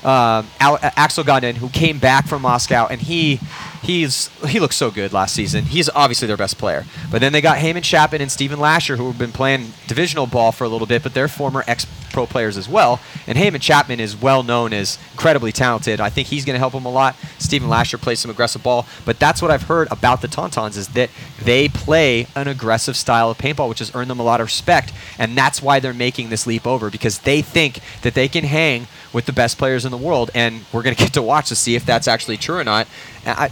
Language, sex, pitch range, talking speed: English, male, 115-145 Hz, 240 wpm